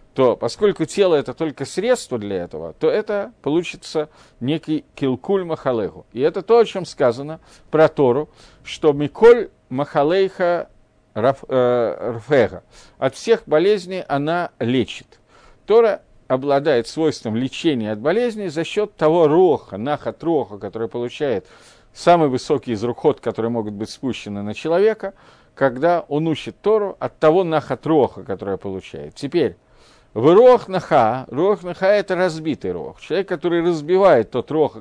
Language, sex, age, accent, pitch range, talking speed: Russian, male, 50-69, native, 125-175 Hz, 140 wpm